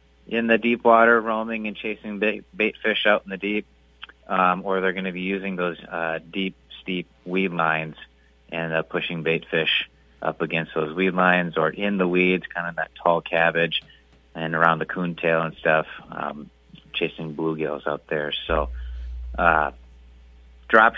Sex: male